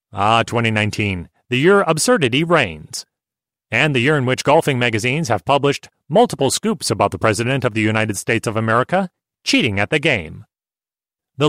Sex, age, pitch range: male, 30-49, 115-160 Hz